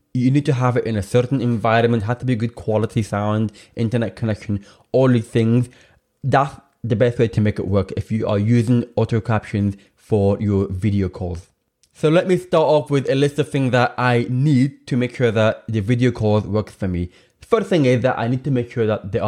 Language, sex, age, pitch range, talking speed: English, male, 20-39, 105-130 Hz, 225 wpm